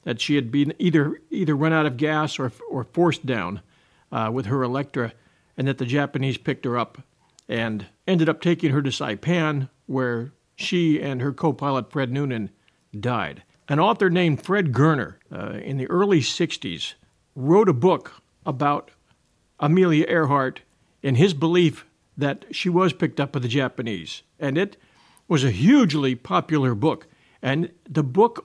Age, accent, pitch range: 50-69, American, 130-160 Hz